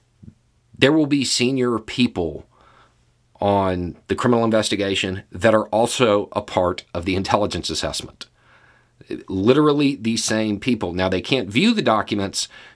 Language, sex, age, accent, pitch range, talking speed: English, male, 40-59, American, 90-115 Hz, 130 wpm